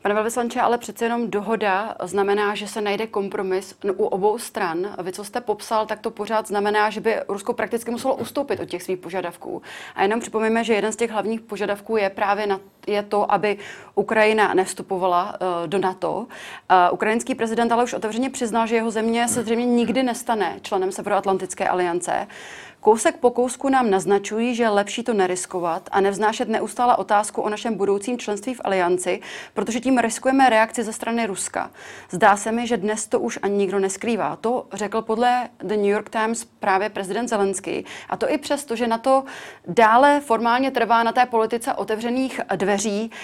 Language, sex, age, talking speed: Czech, female, 30-49, 180 wpm